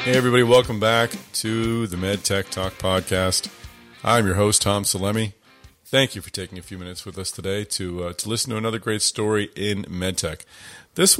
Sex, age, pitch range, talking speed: male, 40-59, 90-105 Hz, 190 wpm